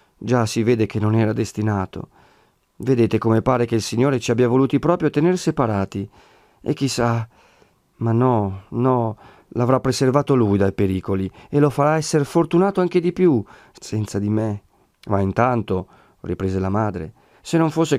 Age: 40-59